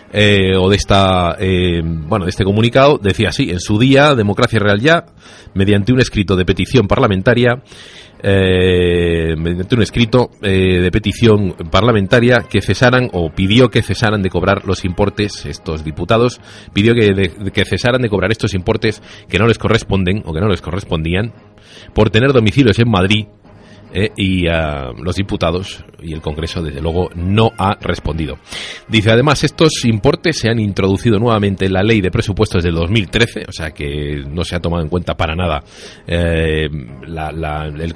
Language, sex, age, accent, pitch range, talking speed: Spanish, male, 40-59, Spanish, 90-110 Hz, 170 wpm